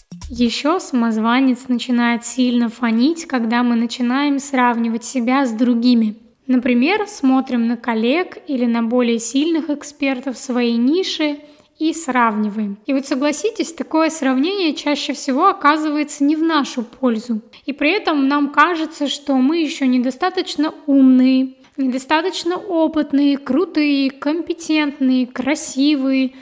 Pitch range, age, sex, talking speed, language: 250-300 Hz, 20-39, female, 120 wpm, Russian